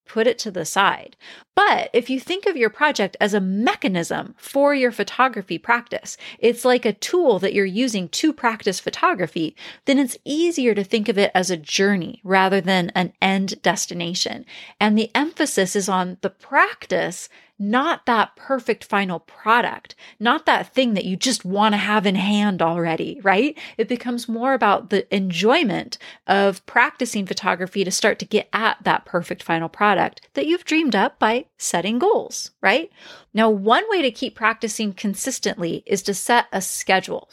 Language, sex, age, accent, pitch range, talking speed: English, female, 30-49, American, 195-260 Hz, 170 wpm